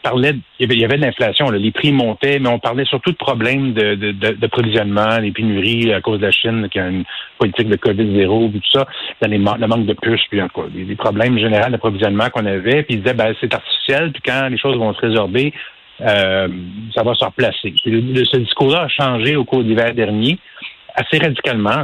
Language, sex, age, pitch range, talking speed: French, male, 60-79, 105-130 Hz, 220 wpm